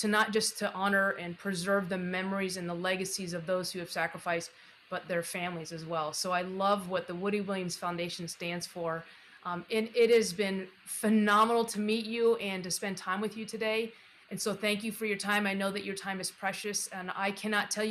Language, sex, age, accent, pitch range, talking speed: English, female, 30-49, American, 175-210 Hz, 220 wpm